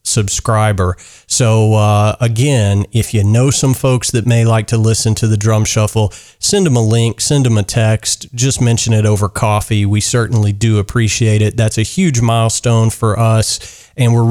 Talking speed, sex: 185 wpm, male